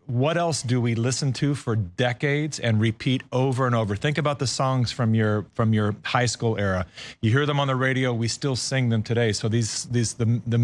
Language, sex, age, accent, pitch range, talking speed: English, male, 40-59, American, 115-140 Hz, 225 wpm